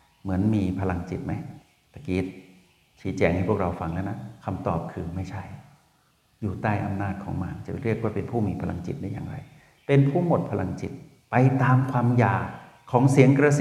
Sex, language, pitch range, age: male, Thai, 95-125 Hz, 60-79